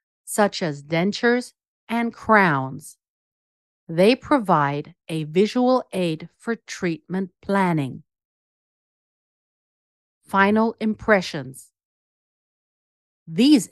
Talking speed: 70 wpm